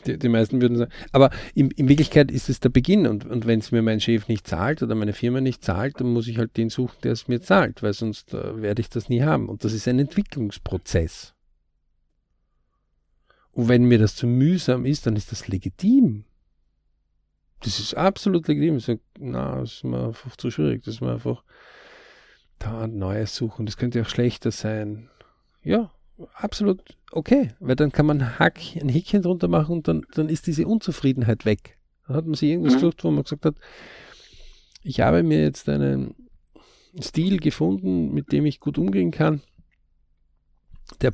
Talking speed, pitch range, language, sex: 185 wpm, 95-145 Hz, German, male